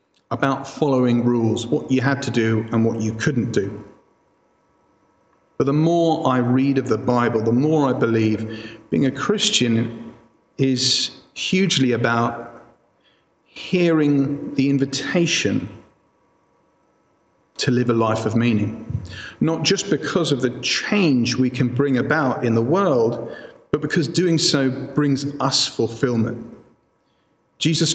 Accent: British